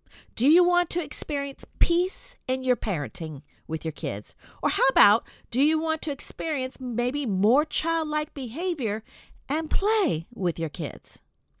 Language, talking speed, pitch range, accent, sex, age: English, 150 wpm, 195-320 Hz, American, female, 50-69